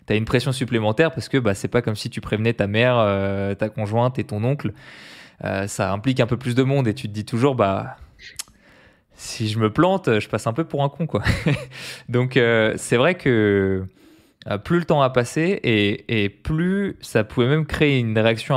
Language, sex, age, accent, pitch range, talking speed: French, male, 20-39, French, 110-135 Hz, 220 wpm